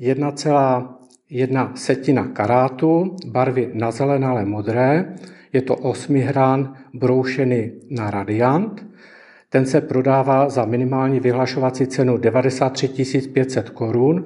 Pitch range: 125-140 Hz